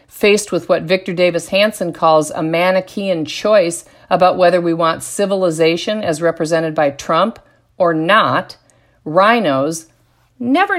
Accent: American